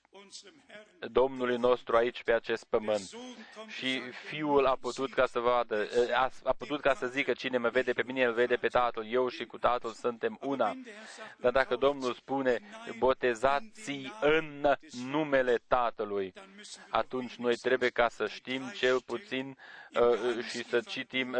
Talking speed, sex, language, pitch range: 150 wpm, male, Romanian, 125-135 Hz